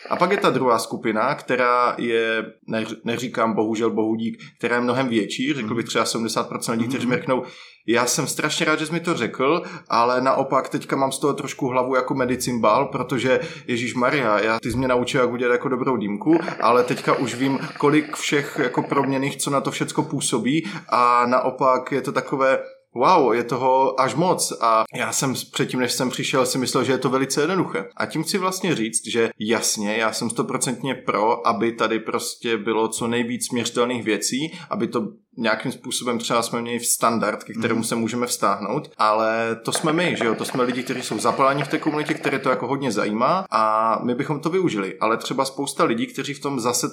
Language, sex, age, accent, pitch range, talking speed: Czech, male, 20-39, native, 120-140 Hz, 200 wpm